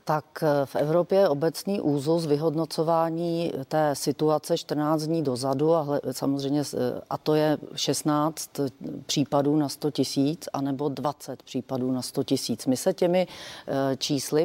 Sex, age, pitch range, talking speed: female, 40-59, 135-155 Hz, 135 wpm